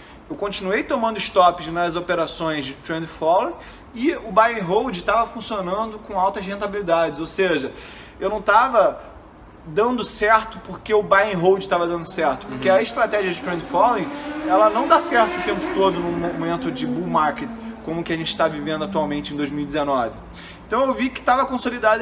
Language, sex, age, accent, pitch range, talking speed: Portuguese, male, 20-39, Brazilian, 155-215 Hz, 185 wpm